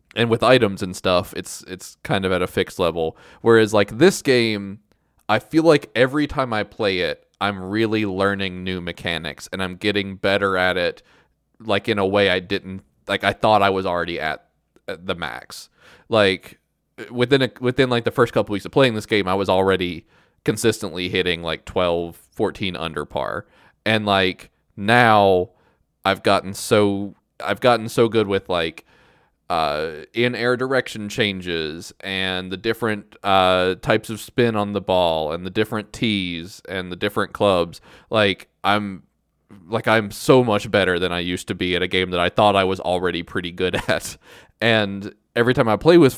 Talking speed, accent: 180 wpm, American